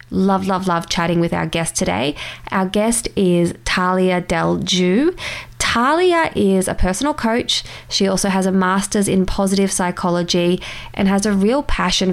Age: 20-39